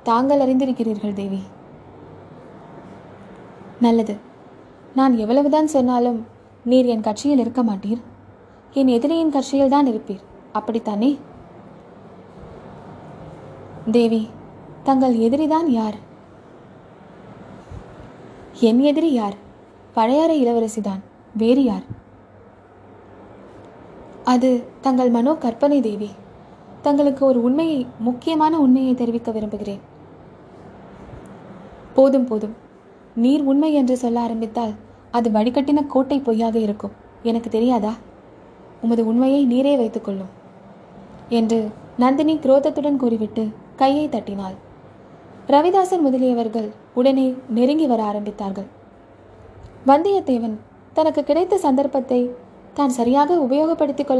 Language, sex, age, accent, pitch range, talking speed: Tamil, female, 20-39, native, 225-275 Hz, 90 wpm